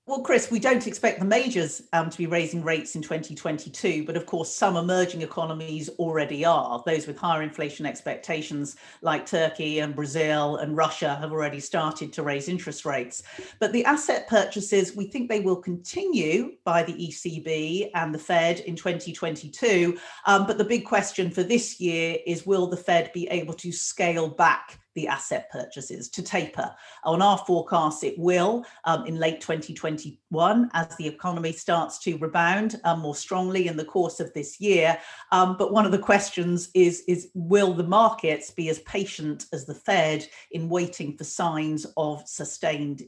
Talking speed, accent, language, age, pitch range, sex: 175 wpm, British, English, 50-69, 160-185 Hz, female